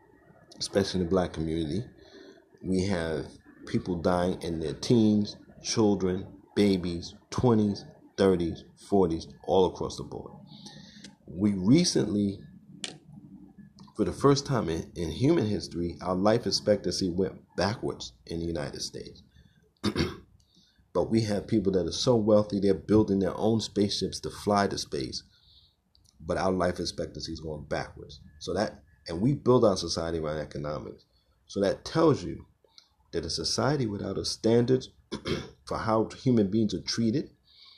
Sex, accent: male, American